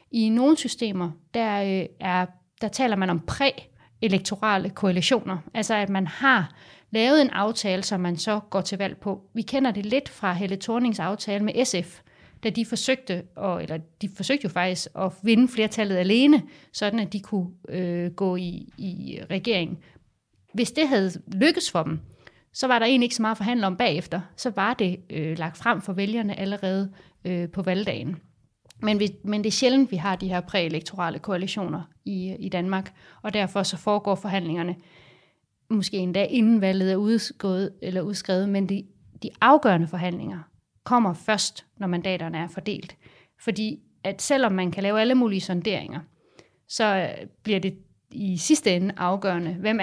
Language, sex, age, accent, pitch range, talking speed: Danish, female, 30-49, native, 180-220 Hz, 170 wpm